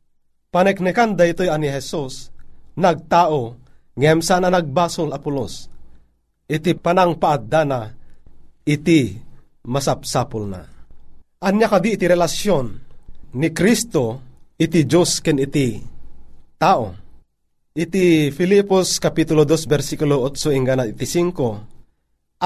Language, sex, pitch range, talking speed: Filipino, male, 125-170 Hz, 95 wpm